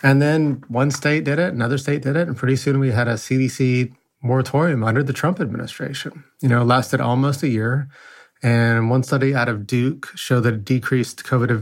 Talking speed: 200 wpm